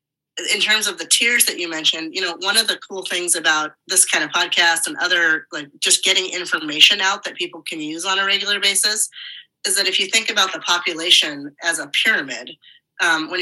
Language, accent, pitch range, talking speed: English, American, 160-190 Hz, 215 wpm